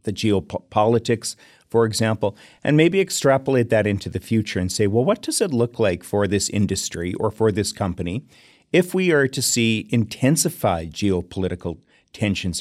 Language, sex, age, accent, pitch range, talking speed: English, male, 40-59, American, 100-130 Hz, 160 wpm